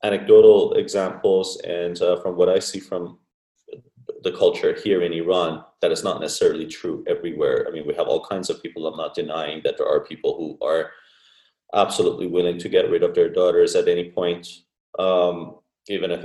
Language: English